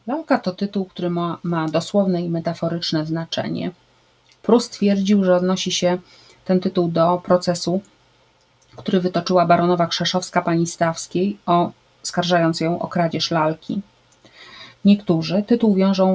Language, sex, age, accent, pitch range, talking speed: Polish, female, 30-49, native, 170-195 Hz, 125 wpm